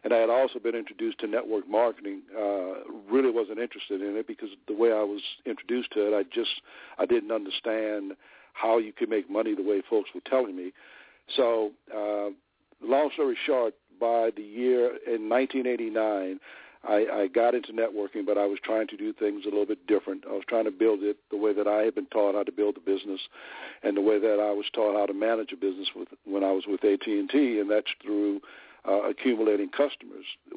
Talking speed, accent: 210 wpm, American